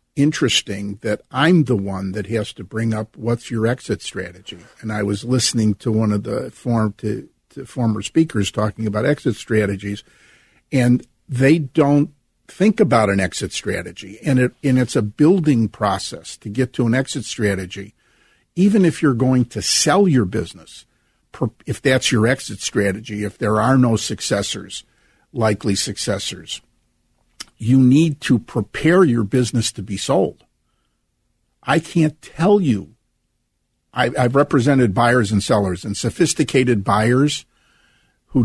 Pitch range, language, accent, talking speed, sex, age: 110-140 Hz, English, American, 140 wpm, male, 50-69